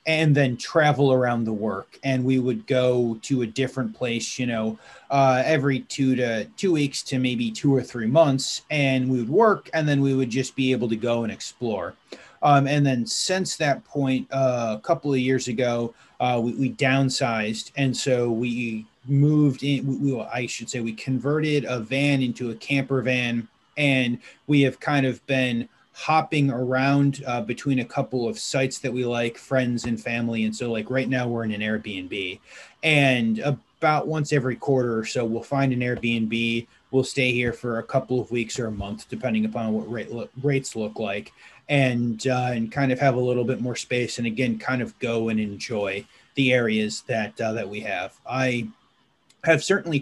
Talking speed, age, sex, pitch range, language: 195 wpm, 30-49, male, 115-140 Hz, English